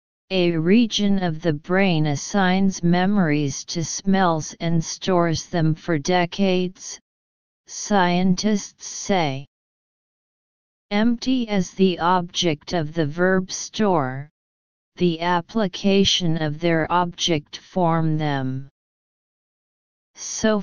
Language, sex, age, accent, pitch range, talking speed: English, female, 40-59, American, 155-190 Hz, 95 wpm